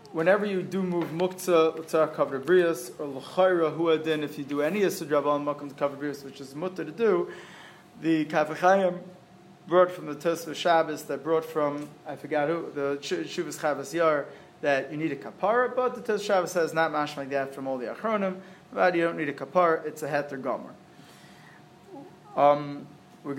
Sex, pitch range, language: male, 145-180 Hz, English